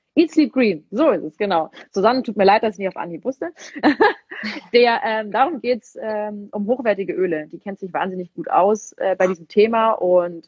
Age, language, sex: 30-49, German, female